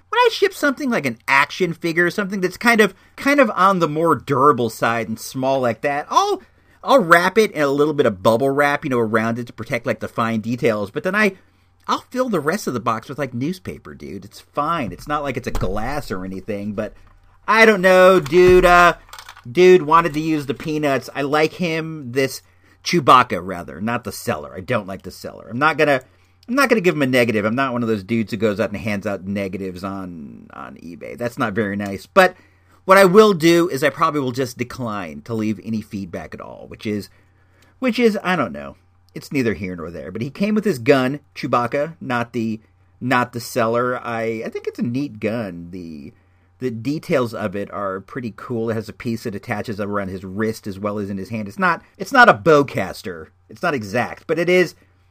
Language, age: English, 40-59